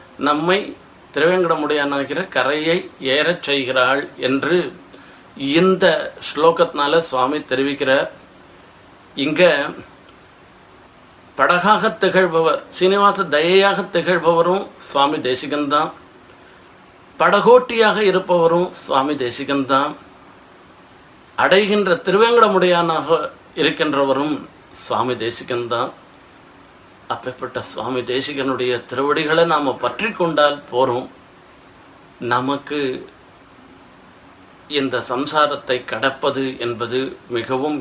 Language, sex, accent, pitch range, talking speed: Tamil, male, native, 120-165 Hz, 65 wpm